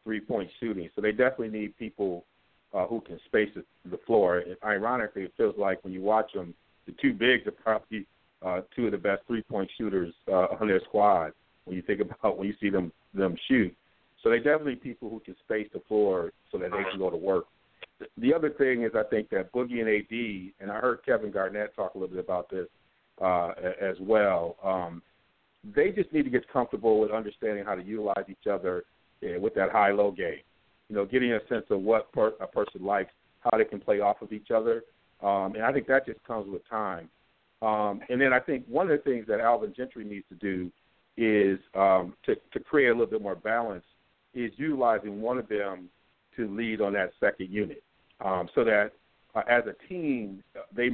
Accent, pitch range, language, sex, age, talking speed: American, 100-125 Hz, English, male, 50-69, 210 wpm